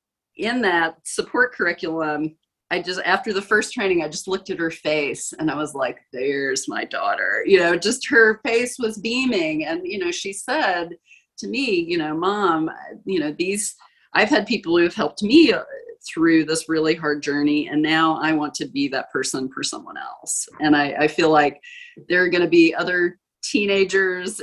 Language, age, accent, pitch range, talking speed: English, 30-49, American, 160-250 Hz, 190 wpm